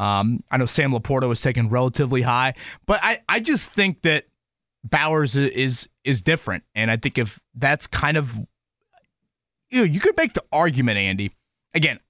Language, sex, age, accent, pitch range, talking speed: English, male, 30-49, American, 125-160 Hz, 180 wpm